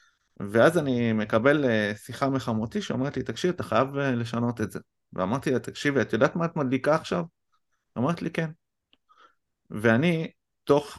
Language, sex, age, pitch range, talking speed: Hebrew, male, 30-49, 110-140 Hz, 145 wpm